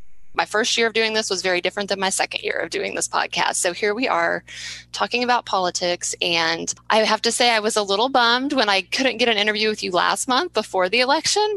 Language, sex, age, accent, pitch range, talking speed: English, female, 20-39, American, 185-240 Hz, 245 wpm